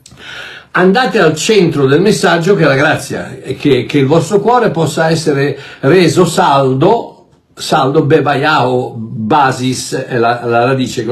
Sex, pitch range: male, 130-160 Hz